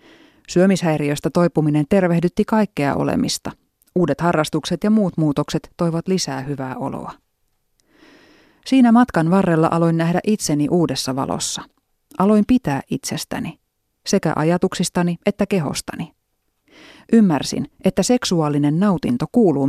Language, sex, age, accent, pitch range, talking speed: Finnish, female, 30-49, native, 155-200 Hz, 105 wpm